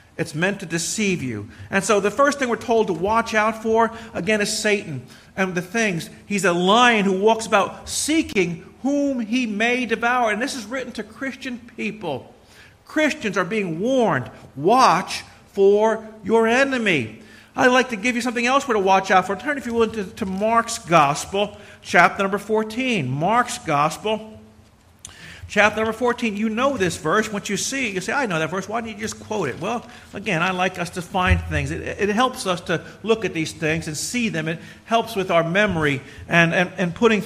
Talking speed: 200 wpm